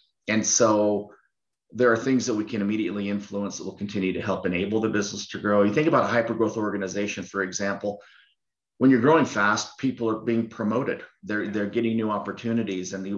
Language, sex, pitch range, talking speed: English, male, 100-115 Hz, 195 wpm